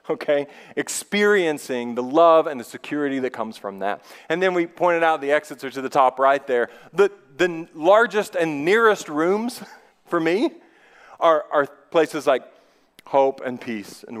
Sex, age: male, 40-59